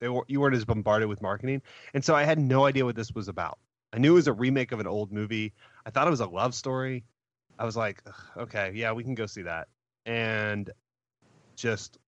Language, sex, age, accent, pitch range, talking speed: English, male, 30-49, American, 95-120 Hz, 230 wpm